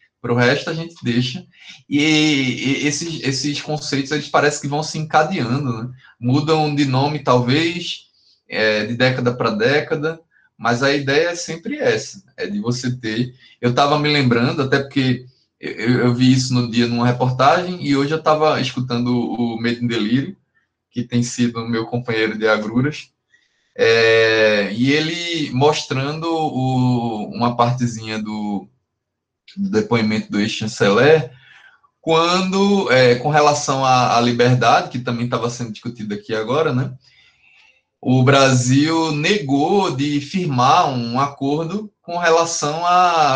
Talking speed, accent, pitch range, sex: 145 wpm, Brazilian, 120-160 Hz, male